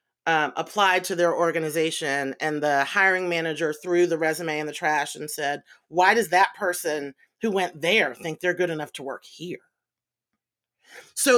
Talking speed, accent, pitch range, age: 170 wpm, American, 175-255 Hz, 40-59